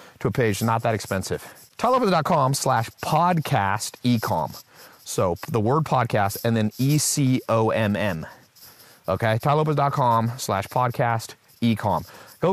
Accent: American